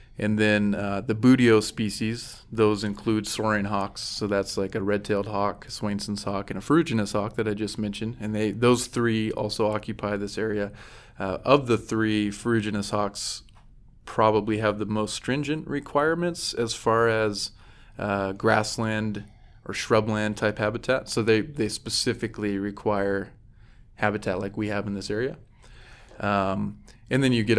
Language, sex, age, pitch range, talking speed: English, male, 20-39, 105-115 Hz, 160 wpm